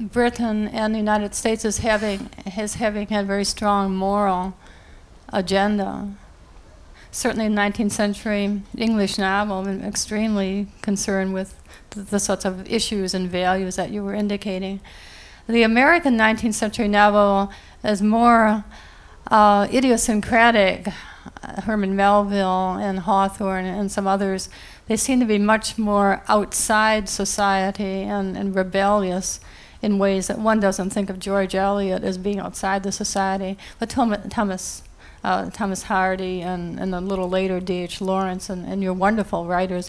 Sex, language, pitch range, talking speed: female, English, 190-215 Hz, 140 wpm